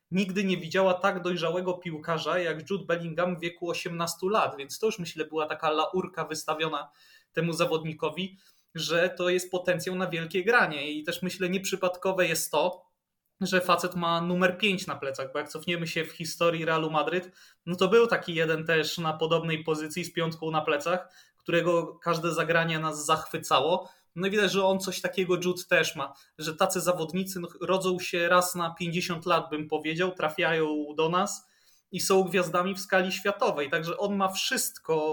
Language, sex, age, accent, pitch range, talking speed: Polish, male, 20-39, native, 160-190 Hz, 175 wpm